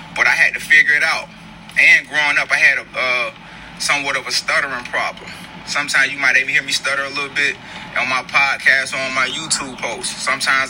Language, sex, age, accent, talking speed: English, male, 20-39, American, 215 wpm